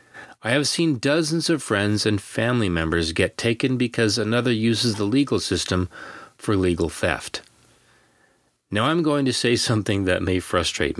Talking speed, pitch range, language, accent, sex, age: 160 wpm, 90-130 Hz, English, American, male, 40-59